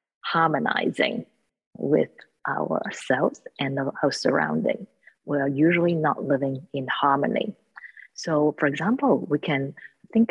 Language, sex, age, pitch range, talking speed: English, female, 30-49, 140-175 Hz, 110 wpm